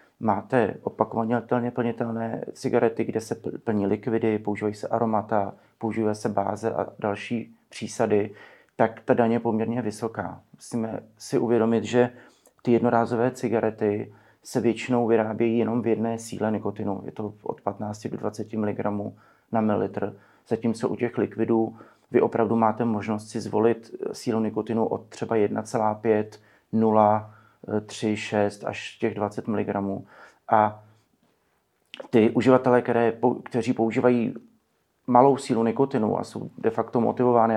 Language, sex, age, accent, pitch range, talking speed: Czech, male, 30-49, native, 110-120 Hz, 135 wpm